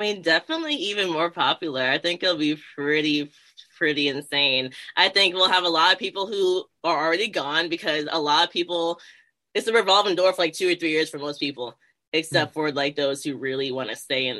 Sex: female